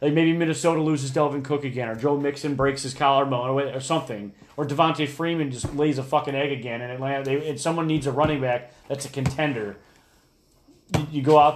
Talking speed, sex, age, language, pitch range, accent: 210 wpm, male, 30-49, English, 130-155 Hz, American